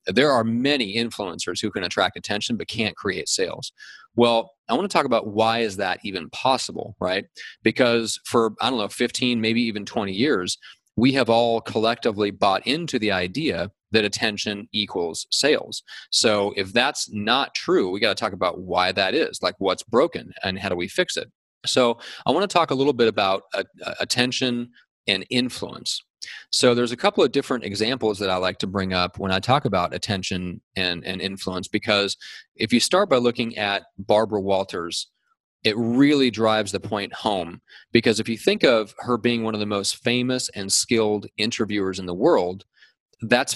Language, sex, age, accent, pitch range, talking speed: English, male, 30-49, American, 100-120 Hz, 185 wpm